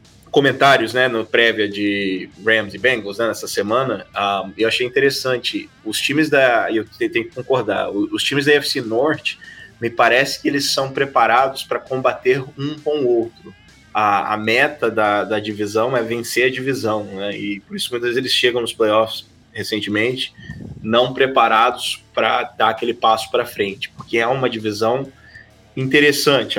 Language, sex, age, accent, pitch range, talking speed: Portuguese, male, 20-39, Brazilian, 105-135 Hz, 165 wpm